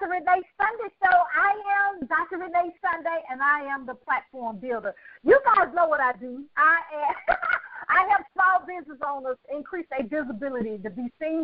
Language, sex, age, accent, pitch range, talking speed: English, female, 50-69, American, 255-360 Hz, 175 wpm